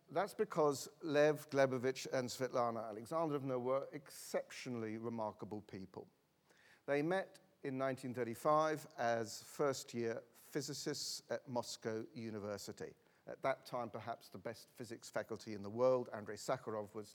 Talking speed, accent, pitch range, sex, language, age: 125 wpm, British, 115-145 Hz, male, English, 50-69